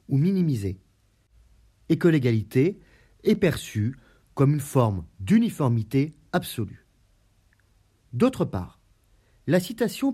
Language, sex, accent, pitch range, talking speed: French, male, French, 105-150 Hz, 95 wpm